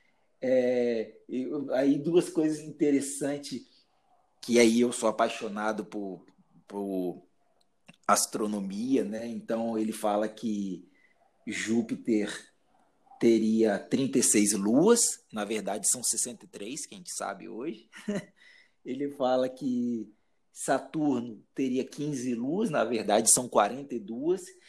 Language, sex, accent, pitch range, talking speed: Portuguese, male, Brazilian, 110-155 Hz, 100 wpm